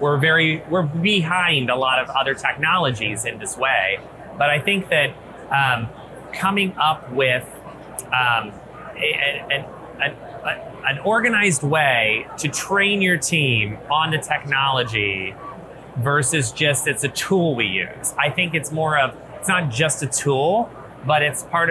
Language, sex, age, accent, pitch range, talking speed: English, male, 30-49, American, 135-165 Hz, 150 wpm